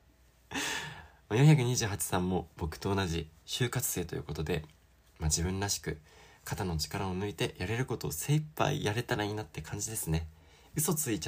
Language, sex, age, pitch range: Japanese, male, 20-39, 80-100 Hz